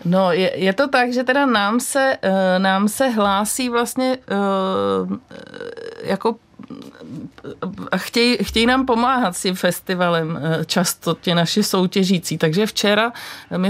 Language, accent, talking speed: Czech, native, 120 wpm